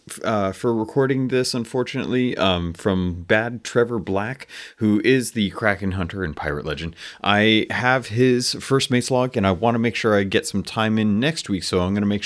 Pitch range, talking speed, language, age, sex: 85-110 Hz, 205 wpm, English, 30-49, male